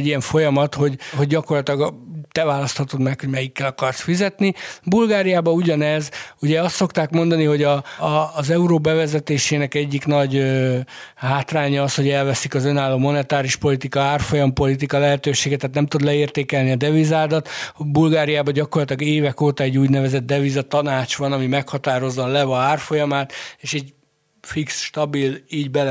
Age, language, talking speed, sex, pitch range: 60-79, Hungarian, 145 wpm, male, 135-155 Hz